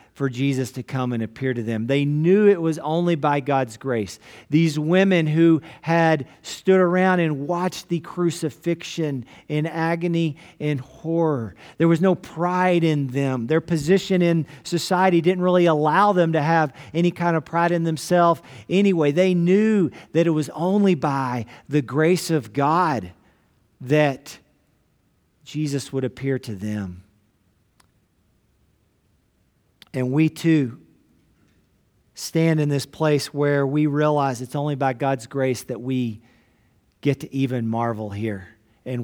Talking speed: 145 wpm